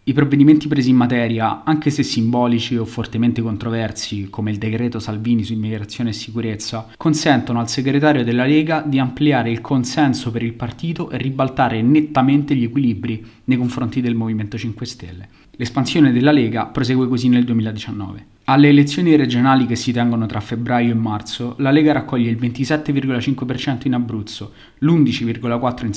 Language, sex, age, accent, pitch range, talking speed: Italian, male, 20-39, native, 115-140 Hz, 155 wpm